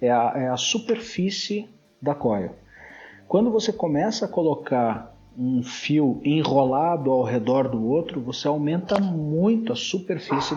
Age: 50-69